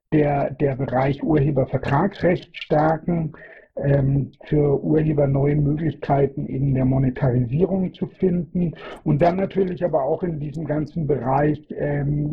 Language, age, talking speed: German, 60-79, 120 wpm